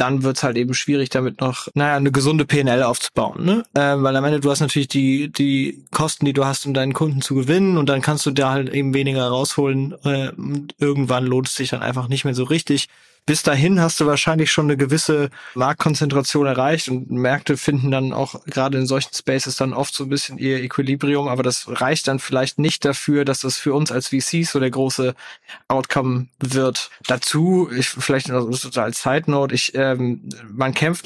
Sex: male